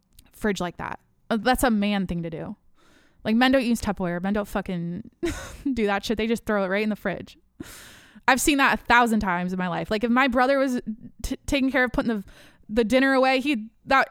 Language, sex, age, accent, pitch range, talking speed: English, female, 20-39, American, 195-250 Hz, 220 wpm